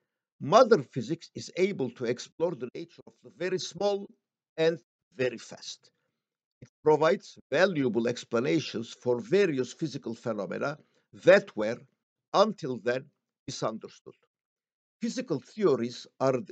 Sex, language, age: male, Turkish, 60-79